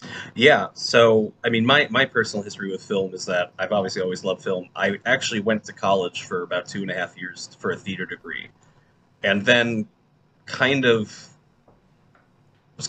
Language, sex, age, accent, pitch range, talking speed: English, male, 20-39, American, 100-125 Hz, 175 wpm